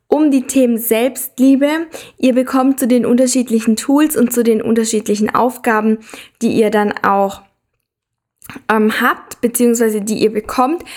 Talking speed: 135 wpm